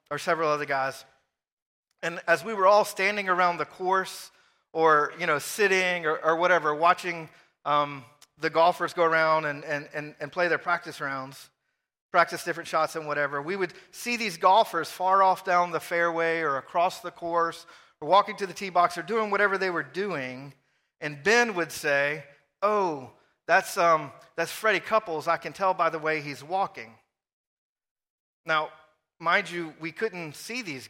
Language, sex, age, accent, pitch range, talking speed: English, male, 40-59, American, 150-180 Hz, 175 wpm